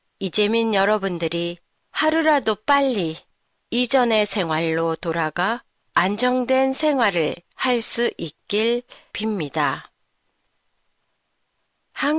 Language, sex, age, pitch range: Japanese, female, 40-59, 190-285 Hz